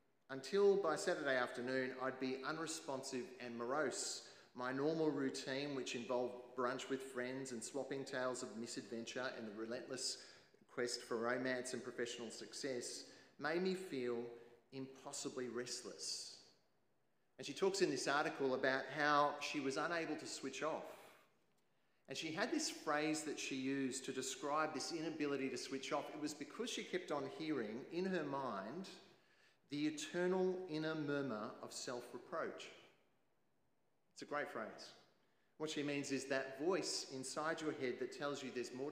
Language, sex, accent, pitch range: English, male, Australian, 125-150 Hz